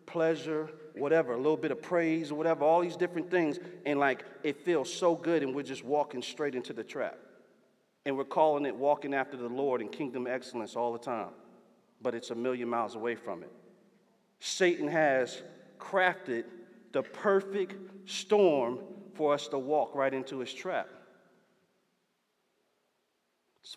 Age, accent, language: 40-59, American, English